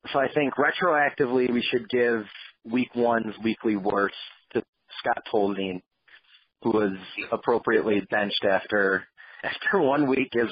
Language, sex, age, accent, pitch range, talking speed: English, male, 30-49, American, 105-130 Hz, 130 wpm